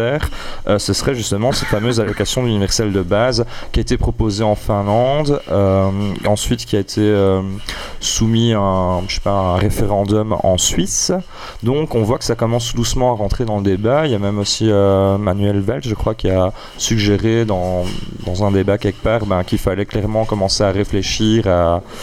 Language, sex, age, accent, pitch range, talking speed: French, male, 20-39, French, 100-130 Hz, 195 wpm